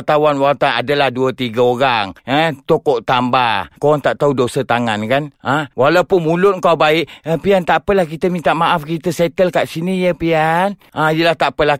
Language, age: Malay, 50-69